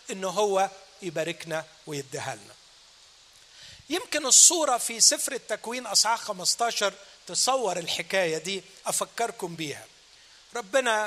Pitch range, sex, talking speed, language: 180-250 Hz, male, 90 wpm, Arabic